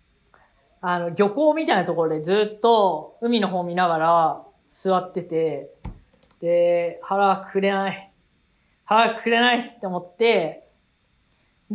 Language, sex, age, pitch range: Japanese, female, 40-59, 175-245 Hz